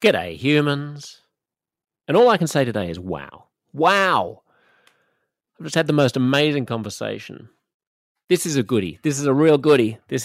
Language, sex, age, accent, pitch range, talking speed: English, male, 30-49, Australian, 105-140 Hz, 165 wpm